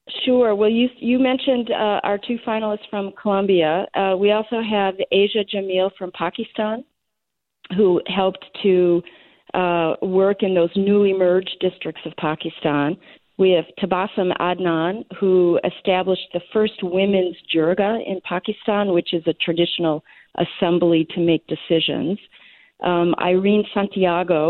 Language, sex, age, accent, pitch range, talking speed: English, female, 40-59, American, 165-195 Hz, 130 wpm